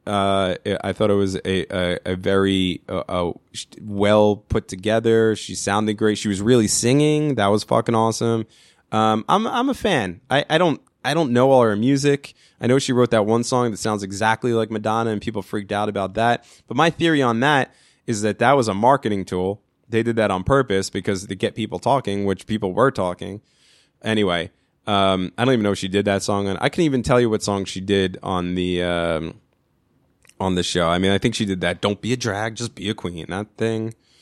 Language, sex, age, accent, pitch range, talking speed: English, male, 20-39, American, 100-135 Hz, 220 wpm